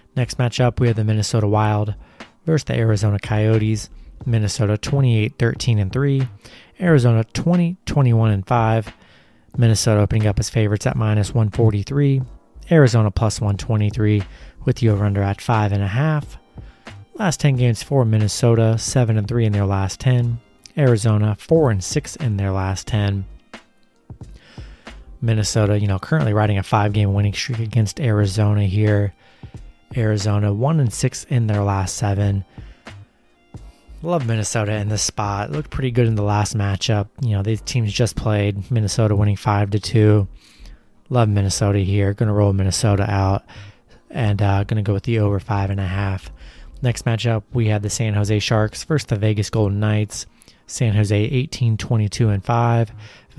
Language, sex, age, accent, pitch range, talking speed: English, male, 30-49, American, 105-120 Hz, 135 wpm